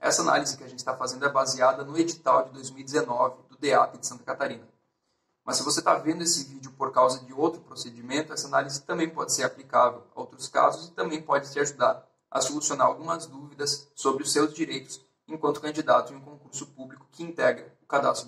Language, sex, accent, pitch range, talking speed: Portuguese, male, Brazilian, 135-160 Hz, 205 wpm